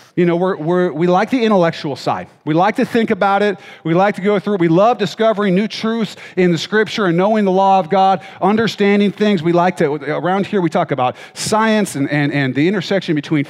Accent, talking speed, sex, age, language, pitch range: American, 230 wpm, male, 40-59, English, 170-215 Hz